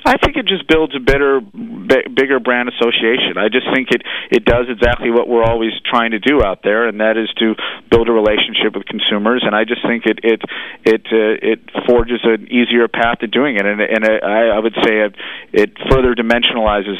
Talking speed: 215 wpm